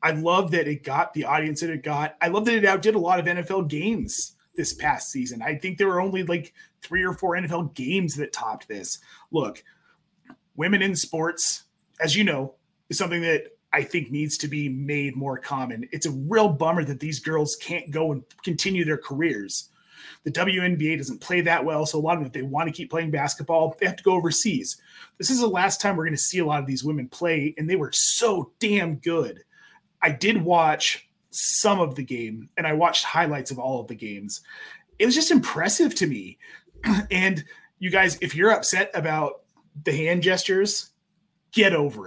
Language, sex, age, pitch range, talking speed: English, male, 30-49, 150-190 Hz, 210 wpm